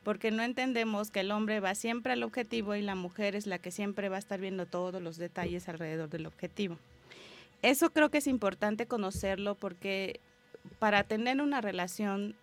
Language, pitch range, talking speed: Spanish, 185-225 Hz, 185 wpm